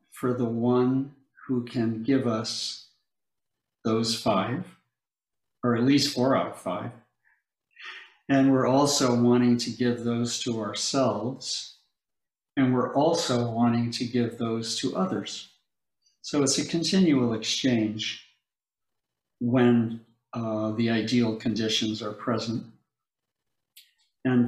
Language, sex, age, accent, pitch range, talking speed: English, male, 50-69, American, 115-135 Hz, 115 wpm